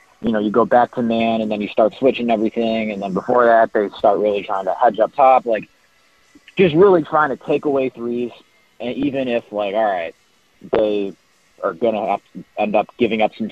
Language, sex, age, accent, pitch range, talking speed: English, male, 30-49, American, 100-130 Hz, 215 wpm